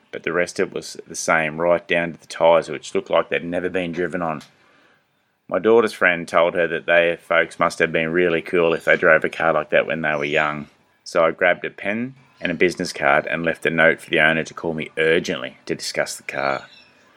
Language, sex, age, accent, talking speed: English, male, 30-49, Australian, 240 wpm